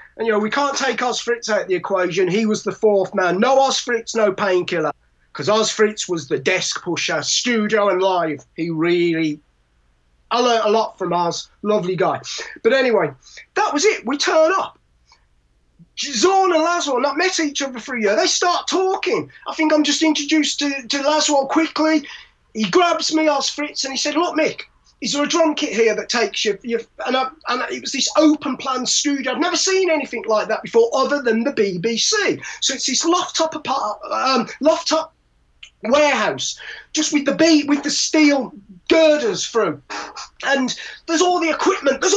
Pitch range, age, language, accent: 240-345 Hz, 30-49, English, British